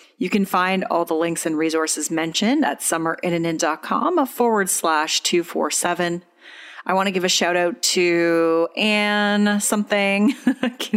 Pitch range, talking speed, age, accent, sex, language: 165-205 Hz, 135 wpm, 30-49, American, female, English